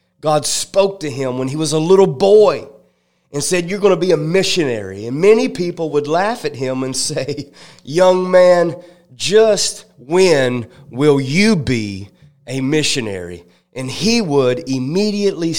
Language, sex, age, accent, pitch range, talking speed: English, male, 30-49, American, 130-160 Hz, 155 wpm